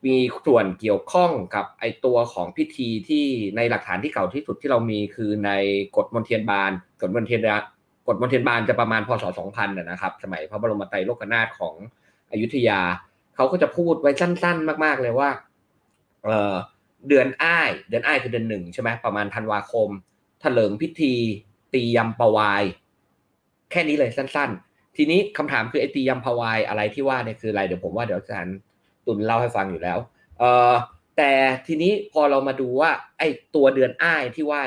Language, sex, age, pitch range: Thai, male, 20-39, 105-135 Hz